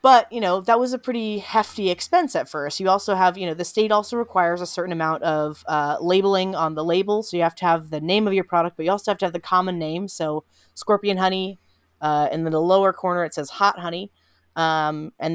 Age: 30-49